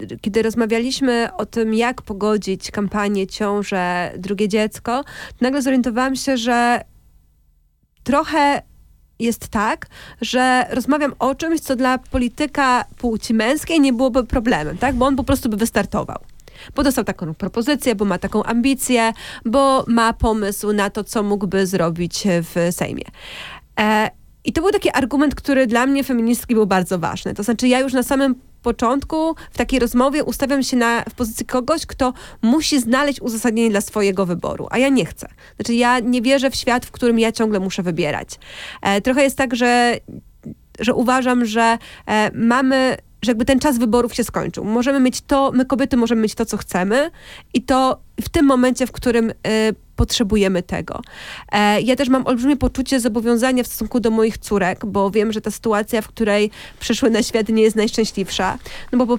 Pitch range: 205-255 Hz